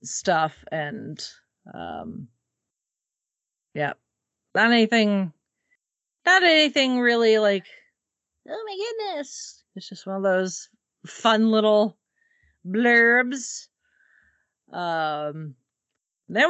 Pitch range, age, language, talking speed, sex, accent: 160-240 Hz, 40-59, English, 85 wpm, female, American